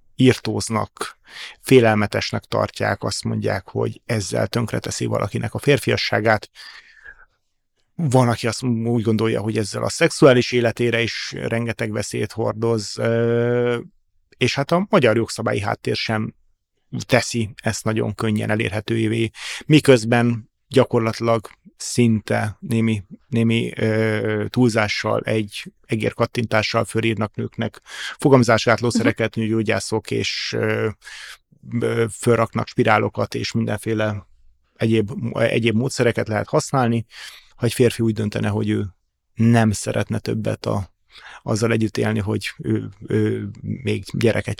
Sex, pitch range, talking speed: male, 105-120 Hz, 110 wpm